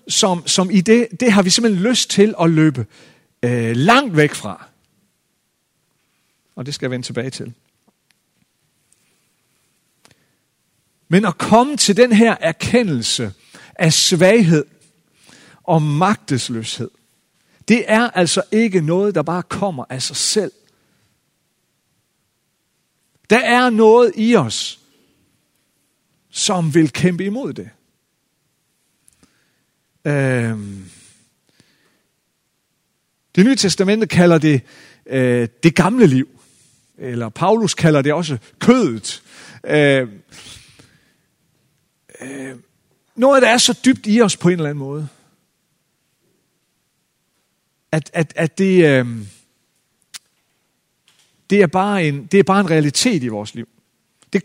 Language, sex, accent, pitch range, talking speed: Danish, male, native, 140-210 Hz, 110 wpm